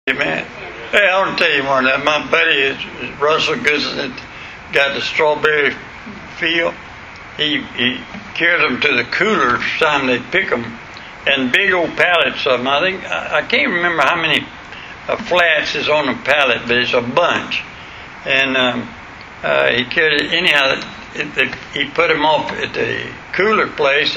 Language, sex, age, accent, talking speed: English, male, 60-79, American, 185 wpm